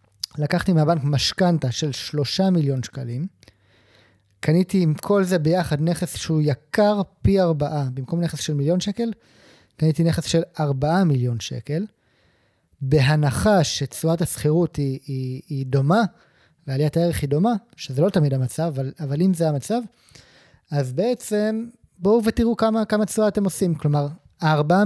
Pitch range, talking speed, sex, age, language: 140-180 Hz, 140 wpm, male, 20-39, Hebrew